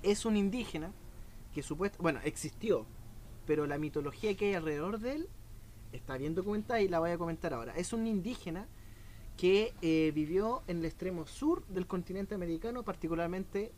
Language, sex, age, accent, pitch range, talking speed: Spanish, male, 20-39, Argentinian, 135-190 Hz, 165 wpm